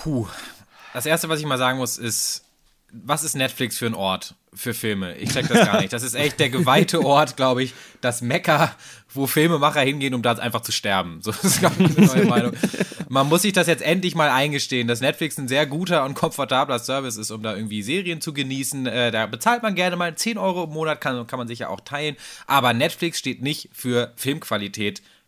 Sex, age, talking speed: male, 20-39, 215 wpm